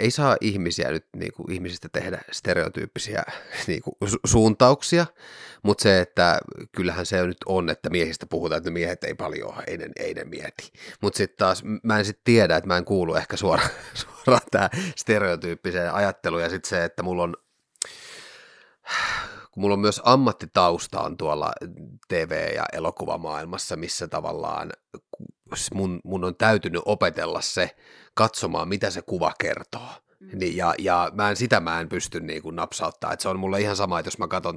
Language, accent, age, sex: Finnish, native, 30-49, male